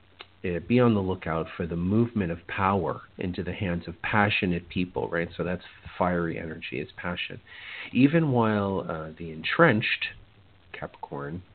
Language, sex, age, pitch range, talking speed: English, male, 50-69, 85-105 Hz, 145 wpm